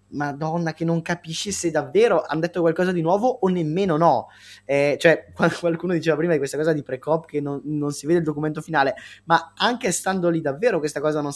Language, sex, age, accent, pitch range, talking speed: Italian, male, 20-39, native, 130-165 Hz, 210 wpm